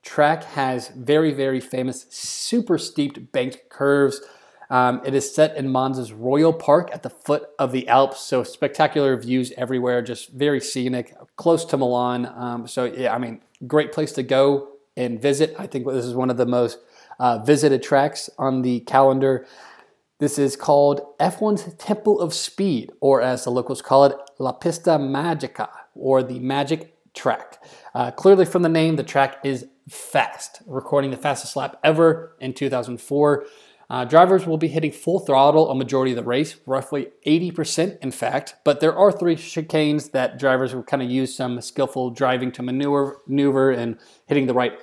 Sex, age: male, 20-39